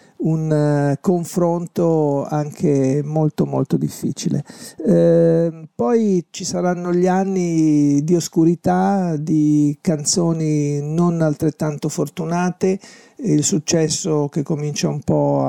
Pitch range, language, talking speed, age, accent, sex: 150-180 Hz, Italian, 100 wpm, 50-69, native, male